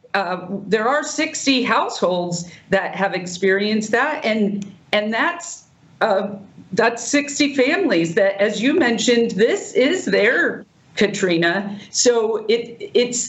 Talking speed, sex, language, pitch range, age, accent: 120 wpm, female, English, 160-200 Hz, 50-69, American